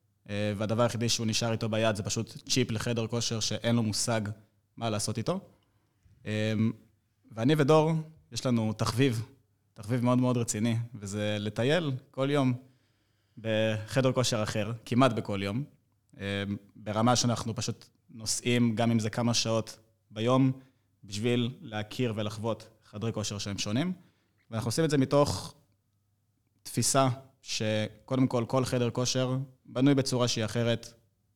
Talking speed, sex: 130 wpm, male